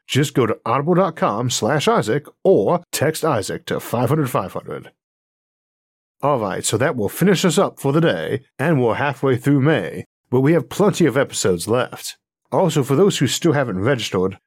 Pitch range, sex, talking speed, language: 115-160 Hz, male, 165 wpm, English